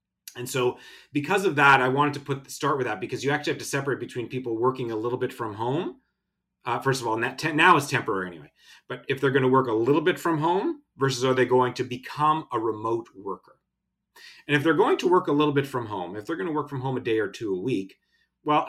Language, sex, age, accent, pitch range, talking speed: English, male, 30-49, American, 125-155 Hz, 255 wpm